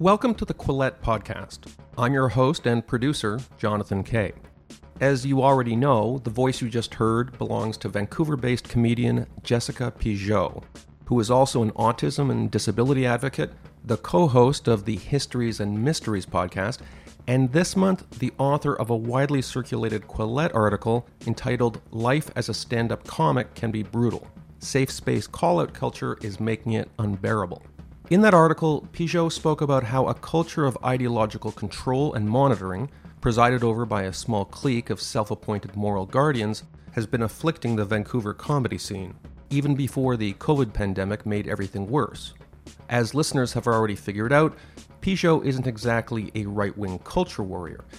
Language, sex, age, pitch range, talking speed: English, male, 40-59, 105-130 Hz, 155 wpm